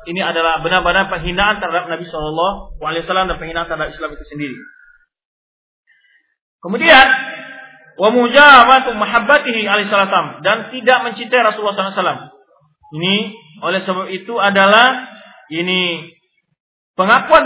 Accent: native